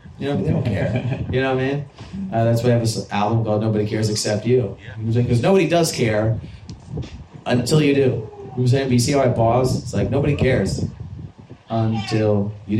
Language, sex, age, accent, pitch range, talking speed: English, male, 30-49, American, 105-125 Hz, 205 wpm